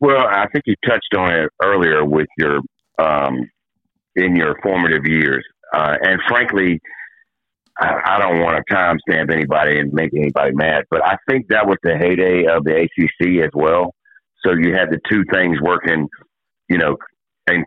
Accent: American